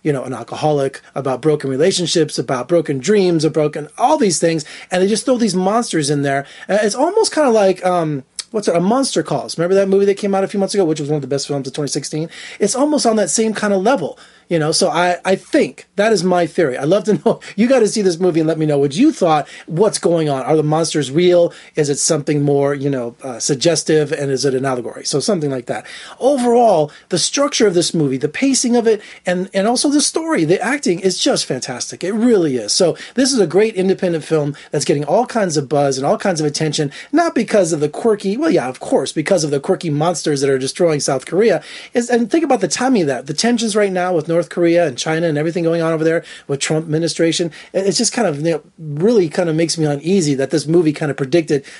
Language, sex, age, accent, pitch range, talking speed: English, male, 30-49, American, 150-210 Hz, 250 wpm